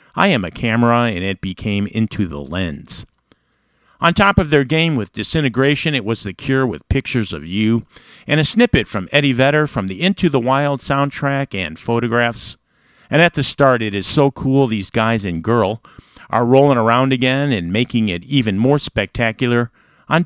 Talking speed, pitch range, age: 185 wpm, 105-140 Hz, 50-69